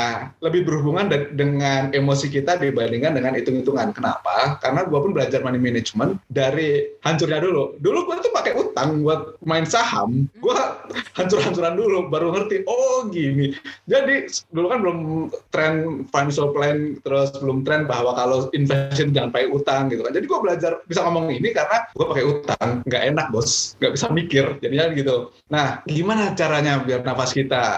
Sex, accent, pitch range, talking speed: male, native, 140-180 Hz, 165 wpm